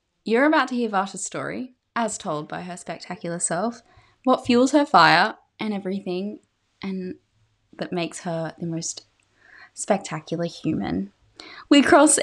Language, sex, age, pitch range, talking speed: English, female, 10-29, 180-245 Hz, 135 wpm